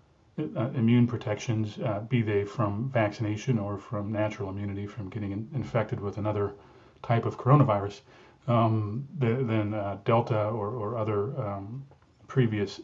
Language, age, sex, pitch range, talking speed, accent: English, 30-49, male, 105-125 Hz, 145 wpm, American